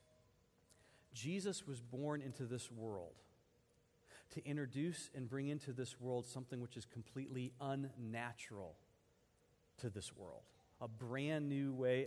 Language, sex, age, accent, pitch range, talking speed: English, male, 40-59, American, 115-150 Hz, 125 wpm